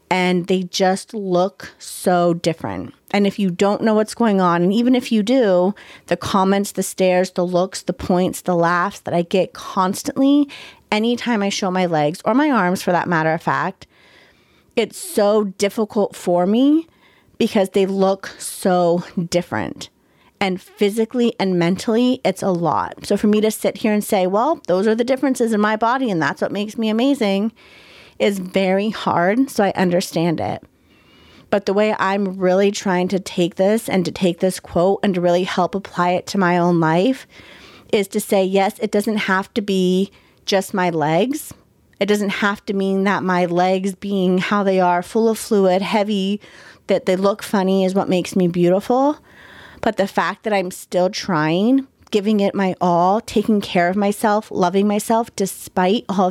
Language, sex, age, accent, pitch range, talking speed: English, female, 30-49, American, 180-215 Hz, 185 wpm